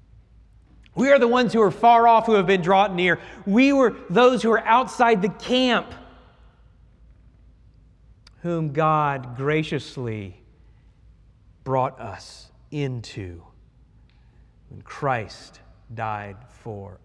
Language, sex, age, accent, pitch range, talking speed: English, male, 40-59, American, 105-145 Hz, 110 wpm